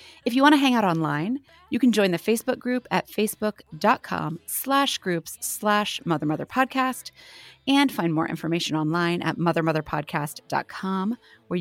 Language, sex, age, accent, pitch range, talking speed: English, female, 30-49, American, 165-225 Hz, 150 wpm